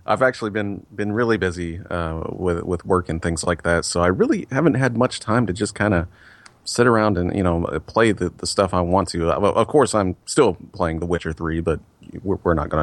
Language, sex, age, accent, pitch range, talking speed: English, male, 30-49, American, 80-105 Hz, 230 wpm